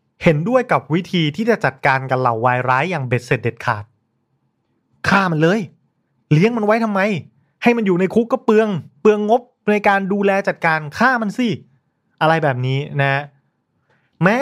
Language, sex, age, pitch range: Thai, male, 30-49, 135-190 Hz